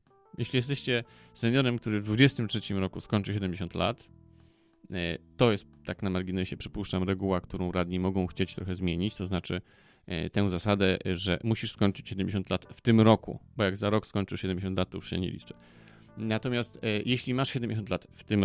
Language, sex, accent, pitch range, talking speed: Polish, male, native, 95-120 Hz, 175 wpm